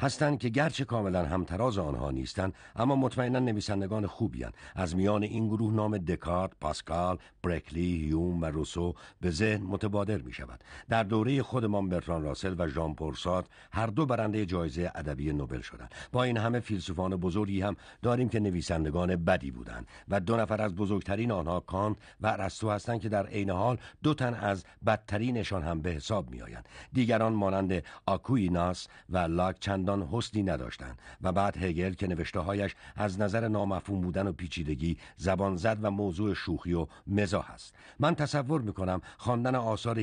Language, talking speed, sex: Persian, 160 wpm, male